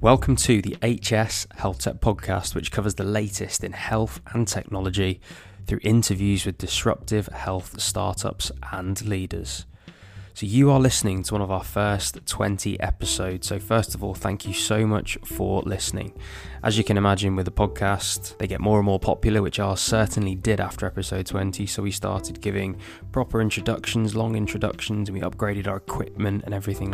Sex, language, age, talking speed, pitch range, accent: male, English, 20-39, 175 wpm, 95-110 Hz, British